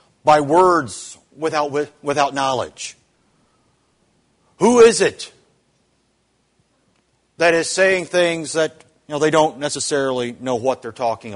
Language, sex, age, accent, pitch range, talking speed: English, male, 50-69, American, 150-205 Hz, 115 wpm